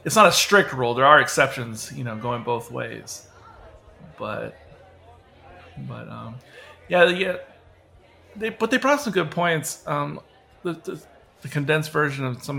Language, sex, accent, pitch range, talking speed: English, male, American, 115-145 Hz, 155 wpm